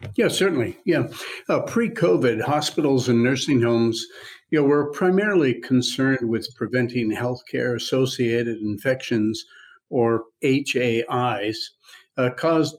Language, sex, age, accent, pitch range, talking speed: English, male, 50-69, American, 115-140 Hz, 105 wpm